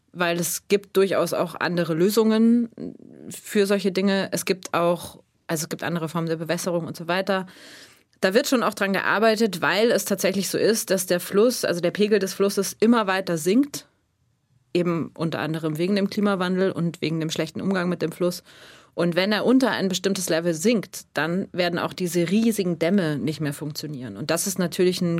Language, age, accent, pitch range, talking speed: German, 30-49, German, 155-190 Hz, 185 wpm